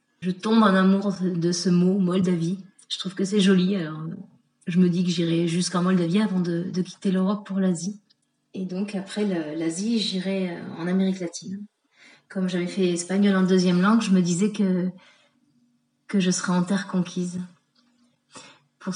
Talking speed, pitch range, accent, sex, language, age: 175 wpm, 180-210 Hz, French, female, French, 30-49